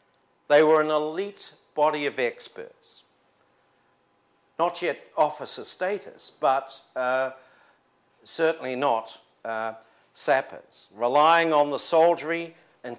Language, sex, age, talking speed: English, male, 60-79, 100 wpm